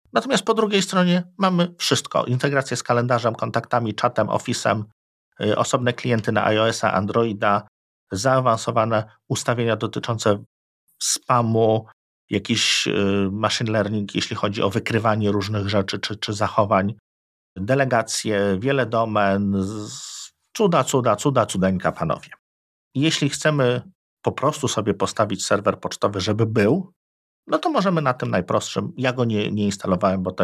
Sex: male